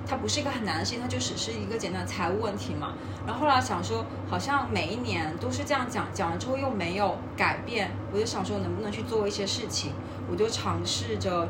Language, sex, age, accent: Chinese, female, 20-39, native